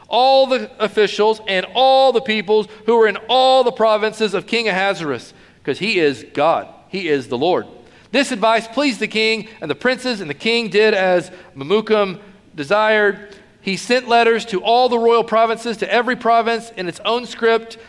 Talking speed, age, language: 180 wpm, 40-59, English